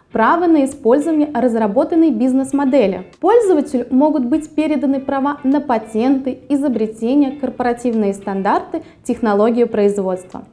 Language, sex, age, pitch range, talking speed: Russian, female, 20-39, 225-295 Hz, 95 wpm